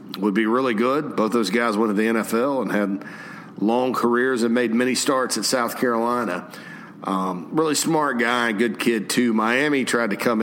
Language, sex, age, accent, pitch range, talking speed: English, male, 40-59, American, 100-120 Hz, 190 wpm